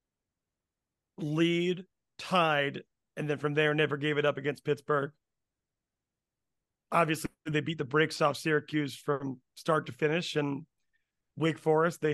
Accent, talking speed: American, 135 wpm